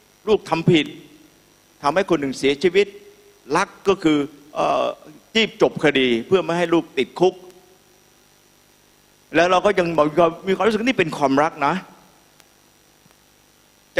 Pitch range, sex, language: 135-190 Hz, male, Thai